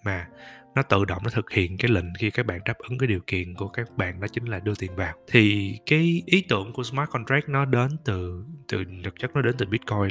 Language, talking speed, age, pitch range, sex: Vietnamese, 255 wpm, 20-39, 95-125 Hz, male